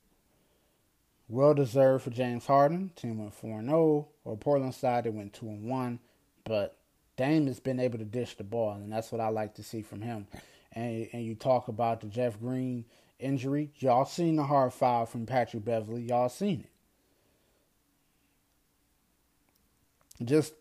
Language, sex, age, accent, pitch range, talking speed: English, male, 20-39, American, 115-150 Hz, 165 wpm